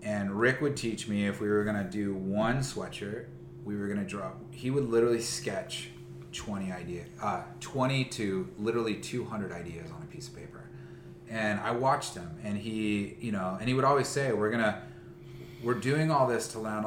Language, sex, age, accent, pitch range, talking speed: English, male, 30-49, American, 90-115 Hz, 195 wpm